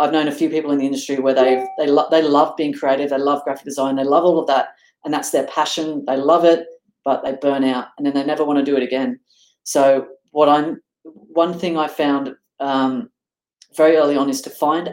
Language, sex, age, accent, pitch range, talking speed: English, female, 40-59, Australian, 135-160 Hz, 235 wpm